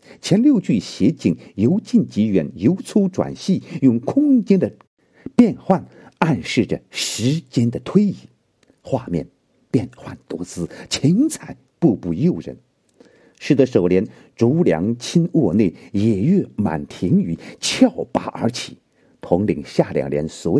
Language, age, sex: Chinese, 50-69, male